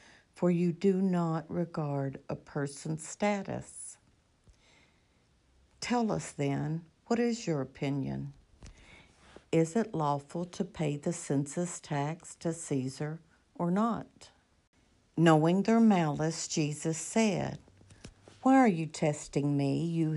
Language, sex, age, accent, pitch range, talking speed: English, female, 60-79, American, 140-185 Hz, 115 wpm